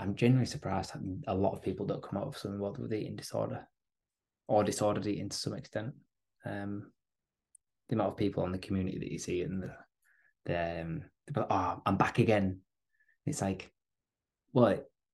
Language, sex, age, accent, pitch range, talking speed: English, male, 20-39, British, 100-125 Hz, 175 wpm